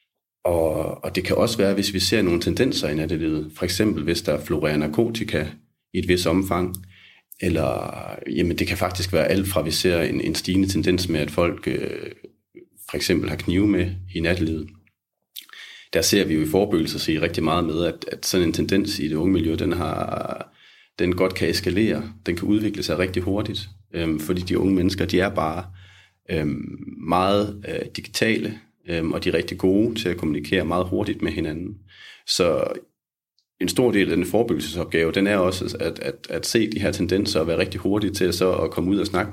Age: 30-49